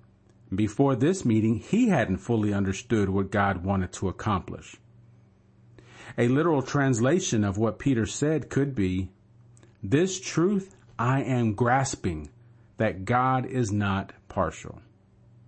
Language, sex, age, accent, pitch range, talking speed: English, male, 40-59, American, 105-130 Hz, 120 wpm